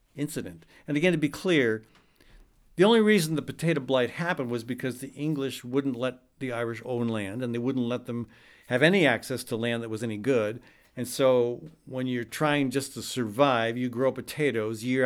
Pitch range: 120-150 Hz